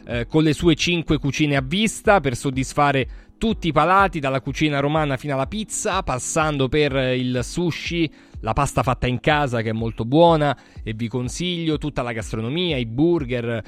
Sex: male